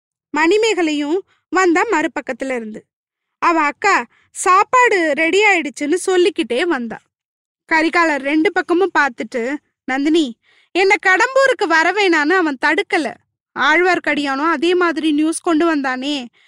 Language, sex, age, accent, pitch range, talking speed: Tamil, female, 20-39, native, 295-385 Hz, 100 wpm